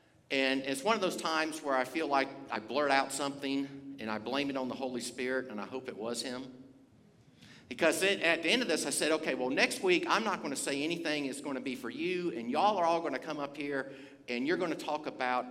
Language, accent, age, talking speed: English, American, 50-69, 265 wpm